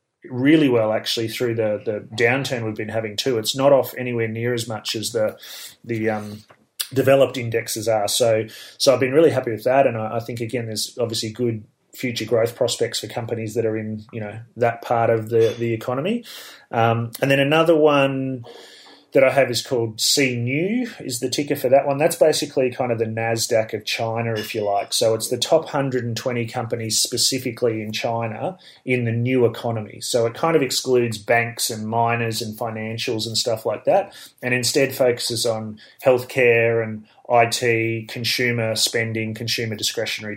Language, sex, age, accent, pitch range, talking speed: English, male, 30-49, Australian, 115-130 Hz, 185 wpm